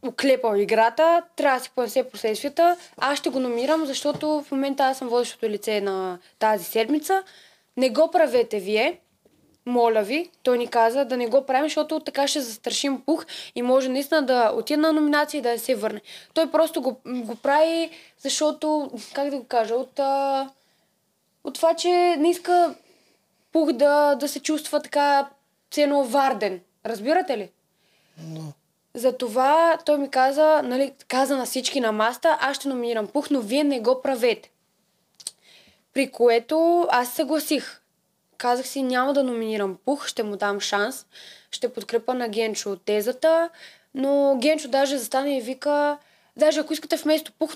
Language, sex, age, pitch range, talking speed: Bulgarian, female, 20-39, 235-300 Hz, 160 wpm